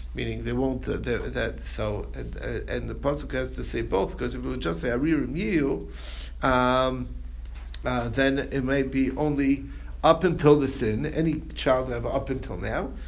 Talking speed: 185 wpm